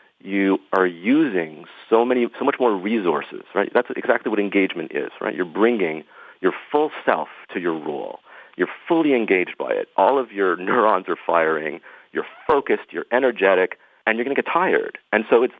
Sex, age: male, 40-59